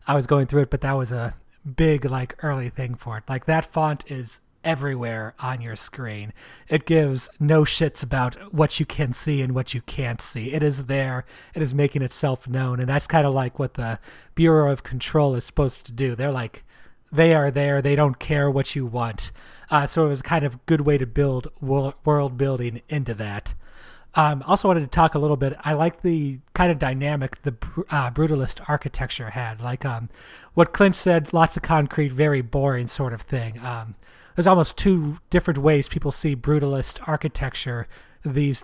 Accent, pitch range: American, 125-155 Hz